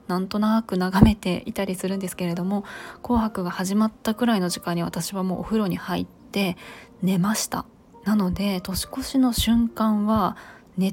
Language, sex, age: Japanese, female, 20-39